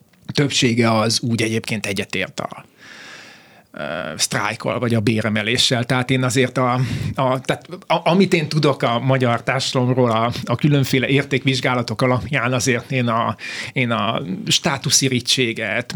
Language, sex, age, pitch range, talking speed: Hungarian, male, 30-49, 120-140 Hz, 110 wpm